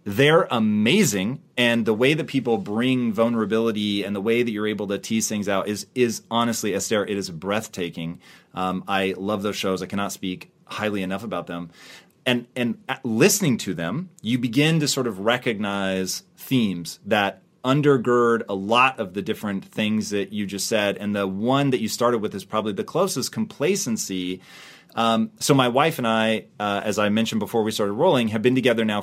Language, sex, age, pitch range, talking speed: English, male, 30-49, 100-125 Hz, 190 wpm